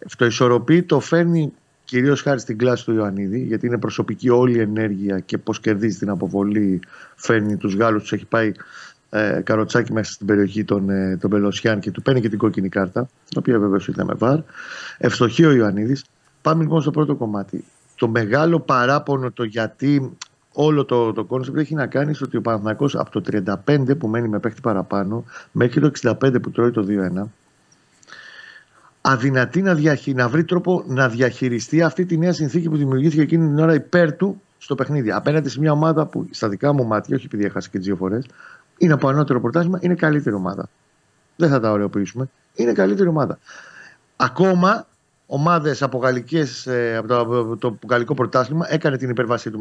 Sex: male